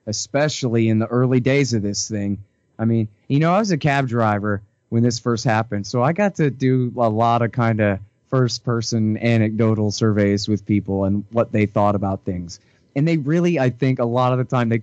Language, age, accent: English, 30-49, American